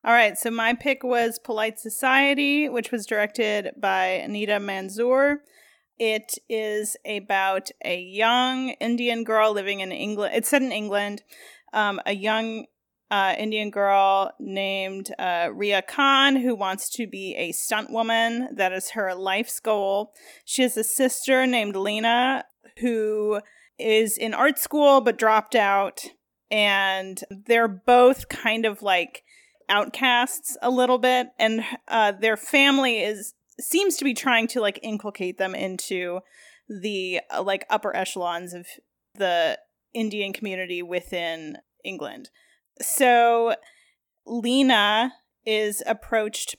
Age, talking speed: 30-49, 130 wpm